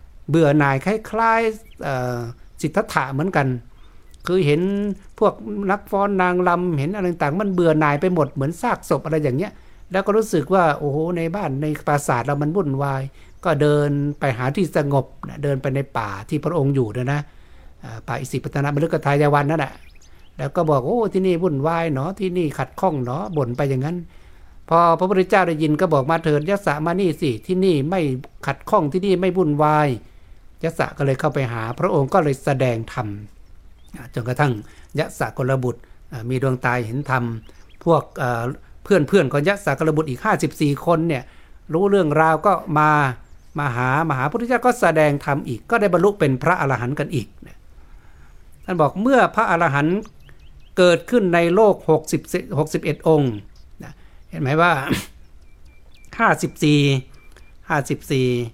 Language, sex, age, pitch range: Thai, male, 60-79, 130-175 Hz